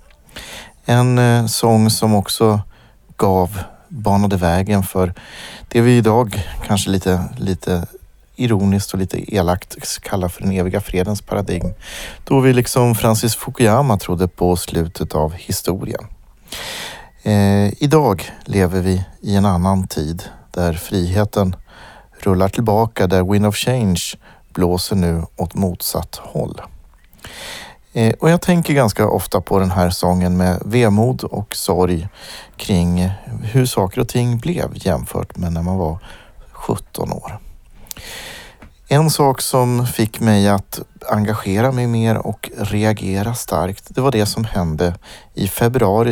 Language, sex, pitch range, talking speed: Swedish, male, 90-115 Hz, 130 wpm